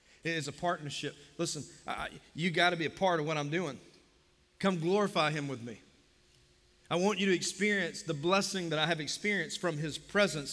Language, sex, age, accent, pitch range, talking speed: English, male, 40-59, American, 165-210 Hz, 195 wpm